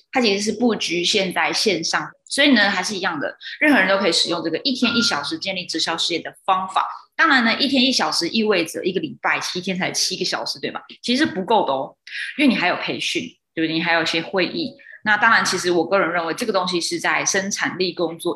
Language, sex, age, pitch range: Chinese, female, 20-39, 170-225 Hz